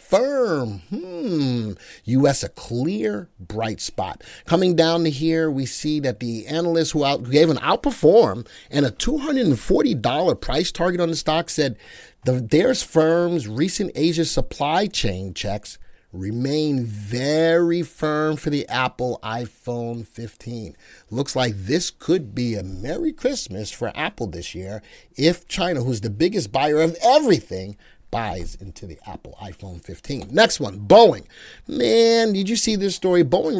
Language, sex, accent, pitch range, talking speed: English, male, American, 120-165 Hz, 145 wpm